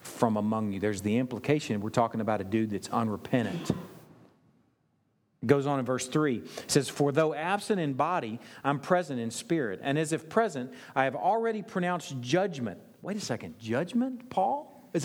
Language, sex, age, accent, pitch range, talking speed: English, male, 40-59, American, 115-175 Hz, 180 wpm